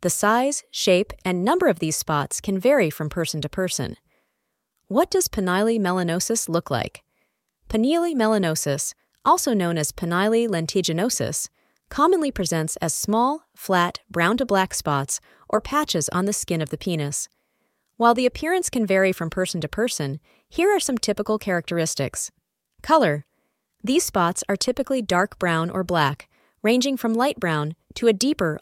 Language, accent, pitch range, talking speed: English, American, 160-230 Hz, 155 wpm